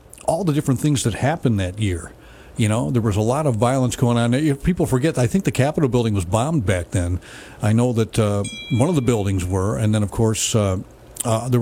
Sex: male